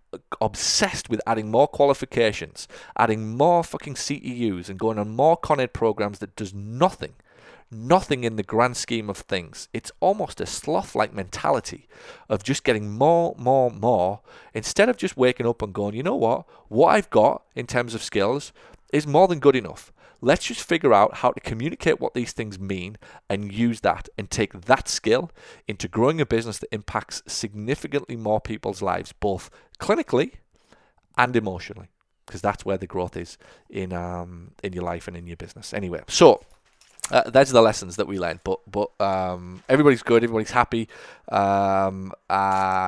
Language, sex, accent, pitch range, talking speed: English, male, British, 90-115 Hz, 175 wpm